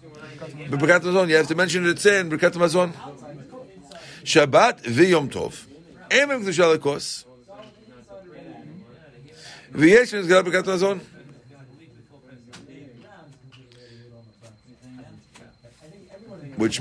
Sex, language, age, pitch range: male, English, 50-69, 135-185 Hz